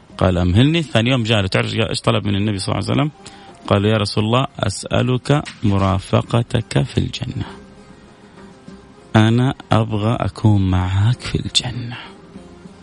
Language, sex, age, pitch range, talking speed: Arabic, male, 30-49, 110-175 Hz, 130 wpm